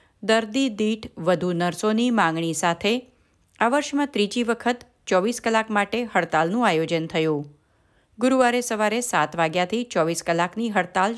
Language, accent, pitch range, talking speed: Gujarati, native, 170-220 Hz, 125 wpm